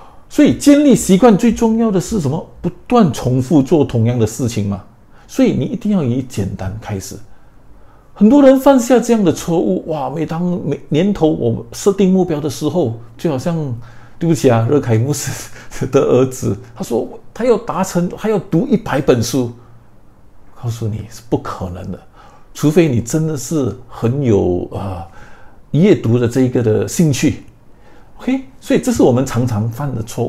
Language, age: Chinese, 50-69